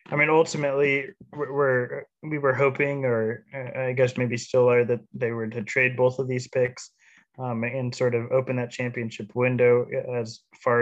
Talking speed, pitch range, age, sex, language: 170 wpm, 115-130 Hz, 20-39, male, English